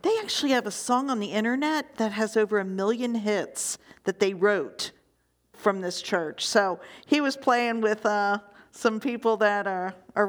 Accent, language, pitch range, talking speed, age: American, English, 180-220 Hz, 180 wpm, 50-69